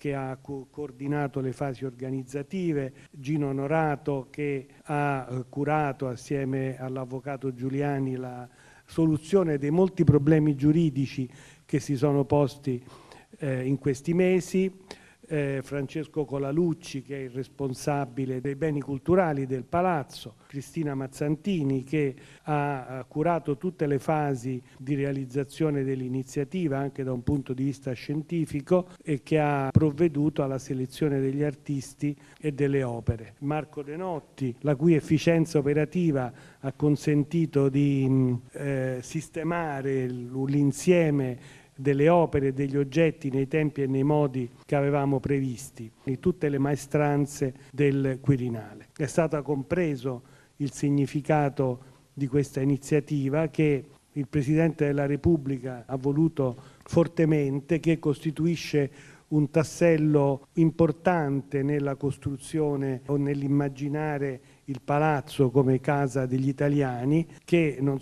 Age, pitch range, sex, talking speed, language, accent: 40-59, 135-150 Hz, male, 115 wpm, Italian, native